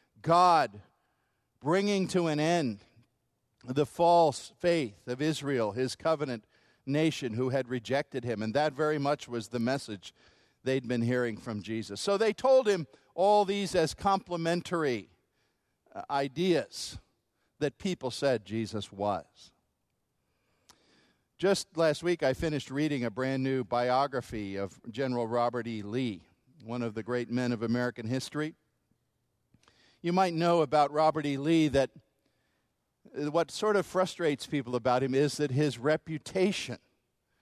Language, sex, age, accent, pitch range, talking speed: English, male, 50-69, American, 120-170 Hz, 135 wpm